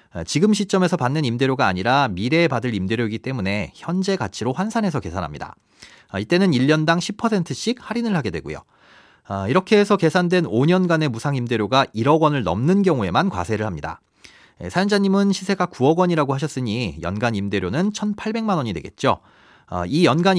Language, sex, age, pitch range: Korean, male, 40-59, 115-185 Hz